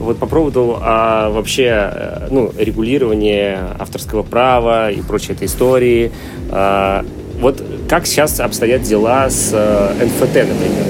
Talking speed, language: 125 wpm, Russian